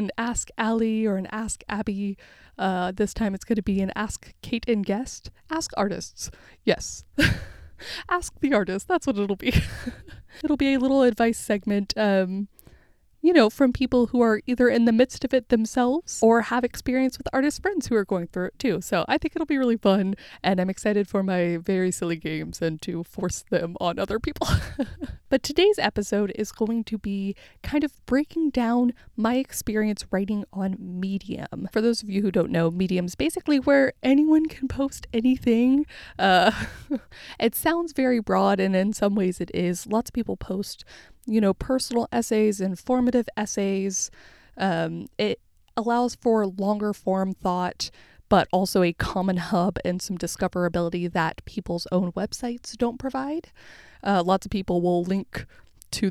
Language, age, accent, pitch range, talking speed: English, 20-39, American, 190-250 Hz, 175 wpm